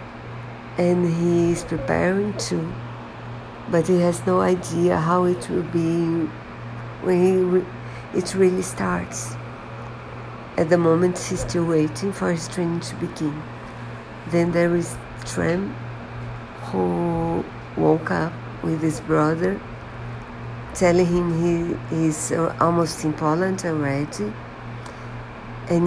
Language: Portuguese